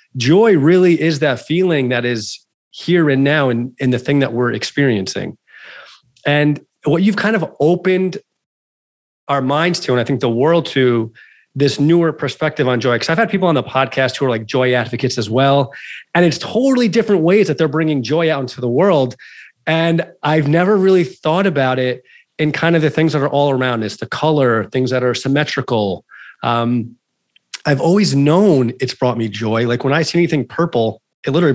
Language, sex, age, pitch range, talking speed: English, male, 30-49, 125-165 Hz, 195 wpm